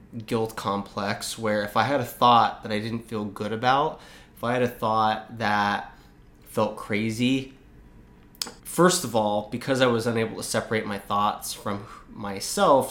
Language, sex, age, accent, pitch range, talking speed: English, male, 20-39, American, 105-115 Hz, 165 wpm